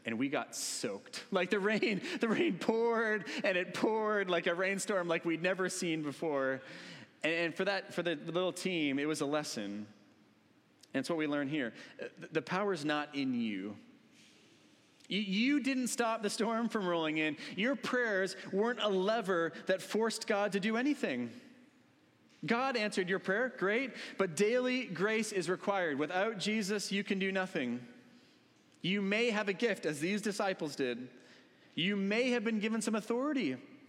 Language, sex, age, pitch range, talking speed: English, male, 30-49, 155-220 Hz, 165 wpm